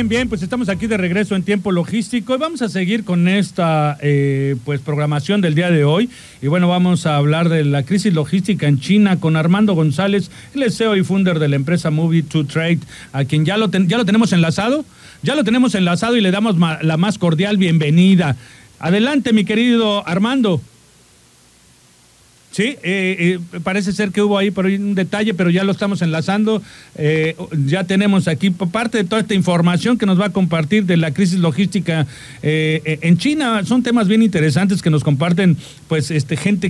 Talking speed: 200 wpm